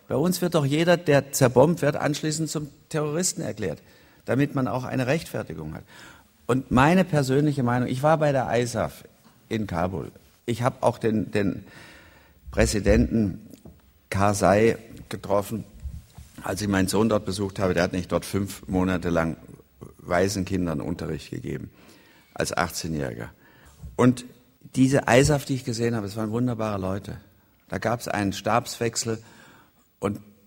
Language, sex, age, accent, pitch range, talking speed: German, male, 50-69, German, 90-120 Hz, 145 wpm